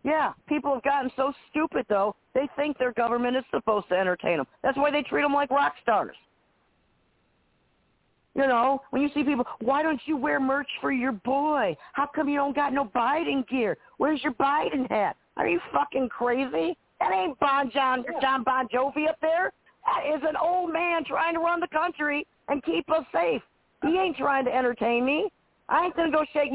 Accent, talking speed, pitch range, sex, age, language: American, 195 wpm, 210-295 Hz, female, 50-69, English